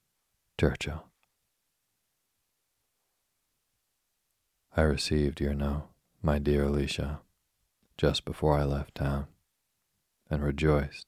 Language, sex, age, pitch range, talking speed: English, male, 40-59, 70-75 Hz, 80 wpm